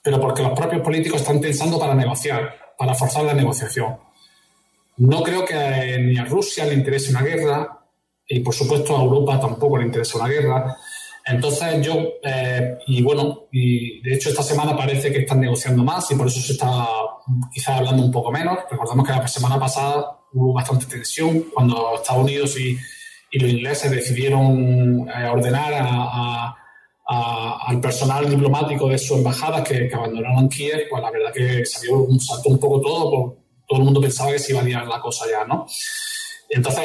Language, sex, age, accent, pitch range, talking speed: Spanish, male, 20-39, Spanish, 125-150 Hz, 185 wpm